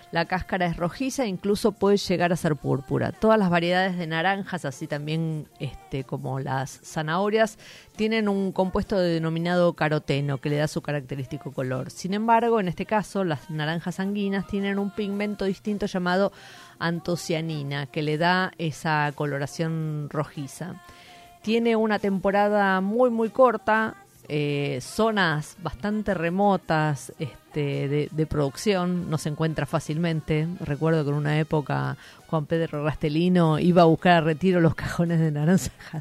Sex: female